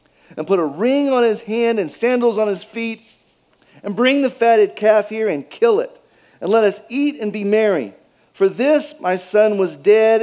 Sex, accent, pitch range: male, American, 185-245 Hz